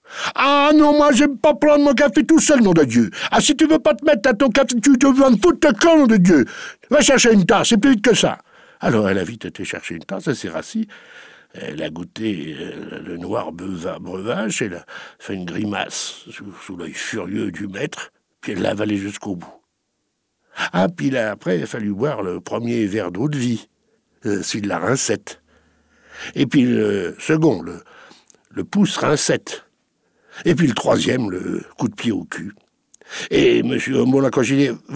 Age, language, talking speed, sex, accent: 60-79, French, 205 wpm, male, French